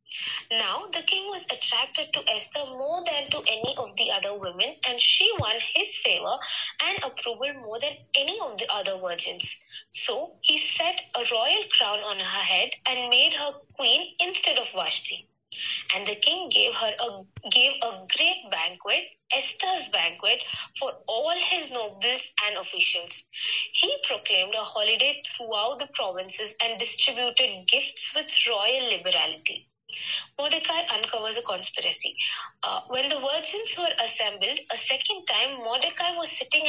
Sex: female